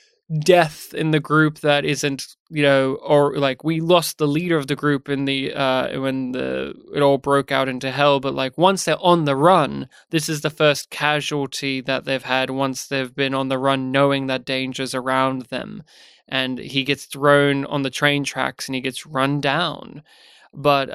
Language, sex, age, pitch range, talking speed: English, male, 20-39, 135-155 Hz, 195 wpm